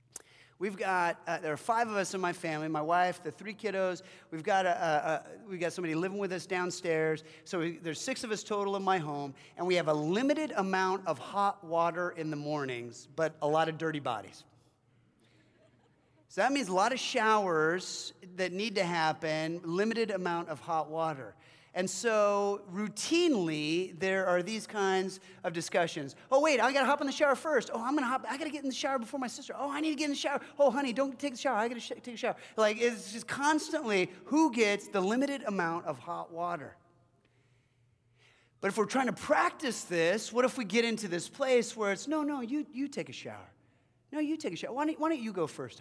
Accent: American